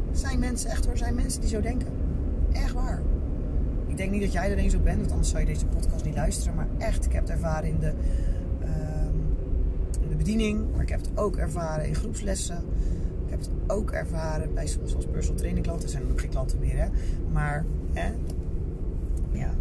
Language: Dutch